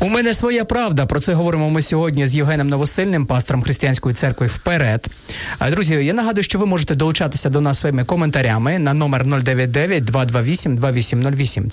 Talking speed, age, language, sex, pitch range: 155 wpm, 30-49, Ukrainian, male, 130-160 Hz